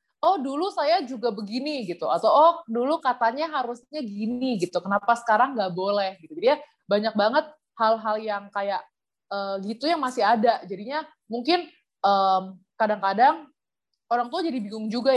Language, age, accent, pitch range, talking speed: Indonesian, 20-39, native, 200-280 Hz, 155 wpm